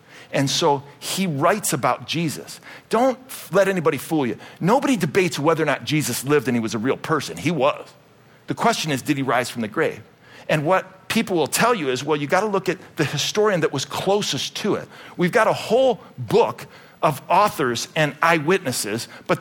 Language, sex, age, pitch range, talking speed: English, male, 50-69, 165-235 Hz, 200 wpm